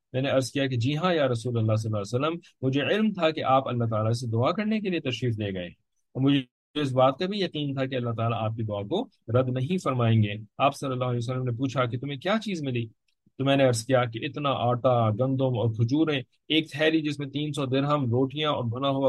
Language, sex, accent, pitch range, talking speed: English, male, Indian, 115-145 Hz, 235 wpm